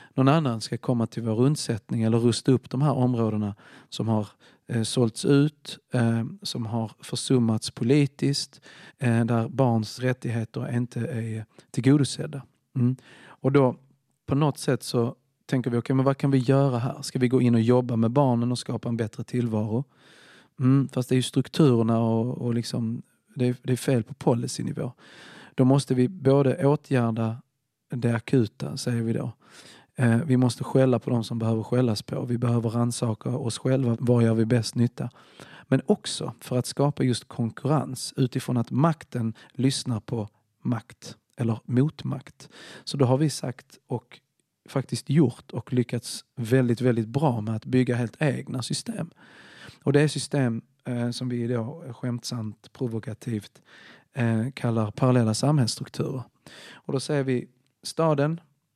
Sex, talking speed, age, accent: male, 155 wpm, 40-59, native